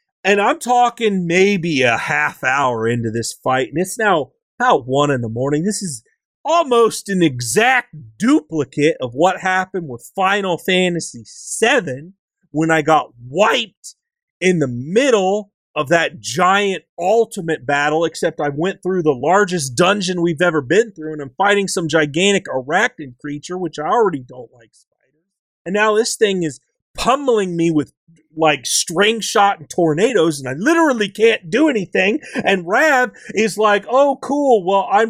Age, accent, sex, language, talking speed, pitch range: 30-49, American, male, English, 160 wpm, 155-220 Hz